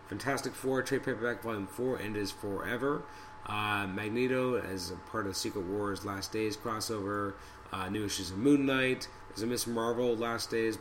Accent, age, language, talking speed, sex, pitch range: American, 30-49, English, 180 wpm, male, 95-120 Hz